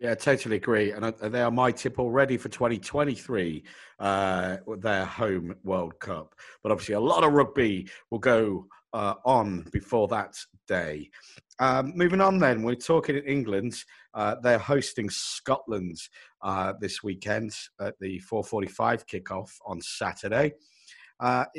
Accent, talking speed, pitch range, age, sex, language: British, 140 wpm, 115-150 Hz, 50-69, male, English